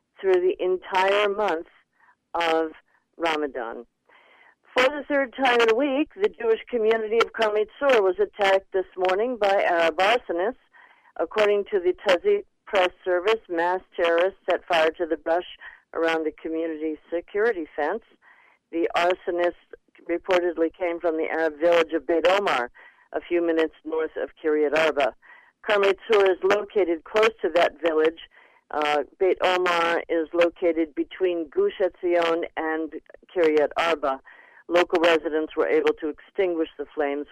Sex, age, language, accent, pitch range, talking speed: female, 50-69, English, American, 165-225 Hz, 140 wpm